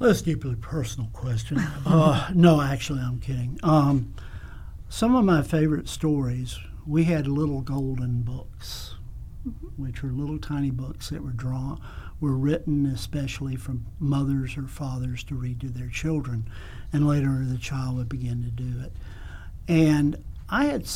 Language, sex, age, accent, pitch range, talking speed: English, male, 60-79, American, 125-150 Hz, 150 wpm